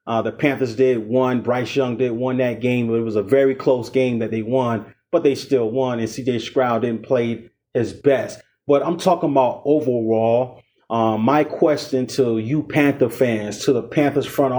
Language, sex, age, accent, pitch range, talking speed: English, male, 30-49, American, 120-150 Hz, 195 wpm